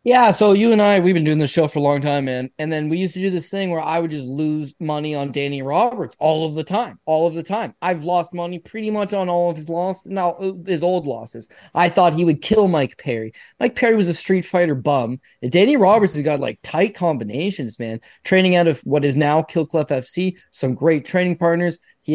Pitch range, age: 140-185 Hz, 20-39